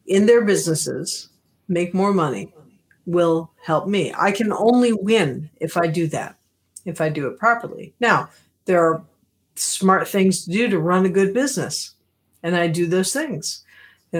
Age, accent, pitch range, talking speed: 50-69, American, 160-195 Hz, 170 wpm